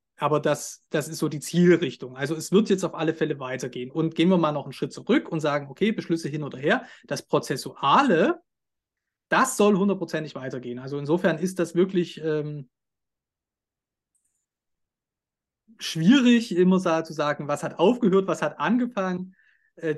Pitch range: 145-185 Hz